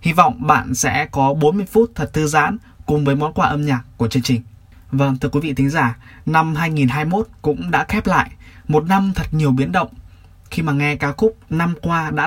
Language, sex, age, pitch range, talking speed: Vietnamese, male, 20-39, 120-150 Hz, 220 wpm